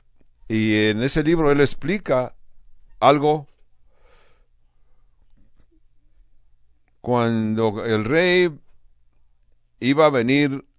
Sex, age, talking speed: male, 60-79, 70 wpm